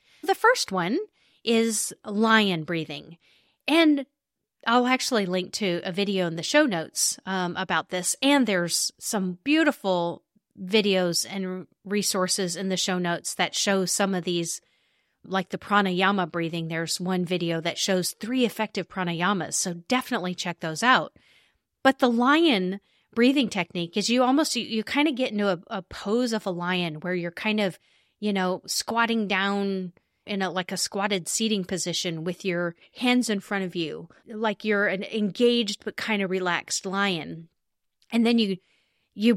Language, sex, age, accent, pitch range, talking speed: English, female, 30-49, American, 180-230 Hz, 165 wpm